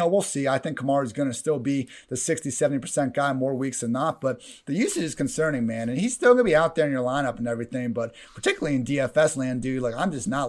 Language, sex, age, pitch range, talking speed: English, male, 30-49, 125-155 Hz, 255 wpm